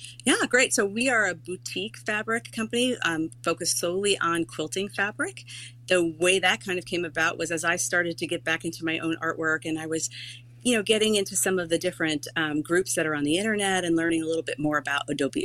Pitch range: 150-185 Hz